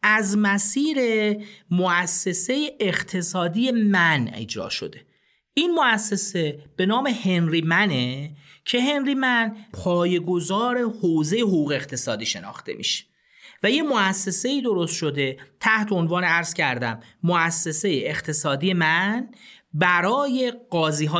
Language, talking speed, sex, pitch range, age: Persian, 105 wpm, male, 160-215 Hz, 40-59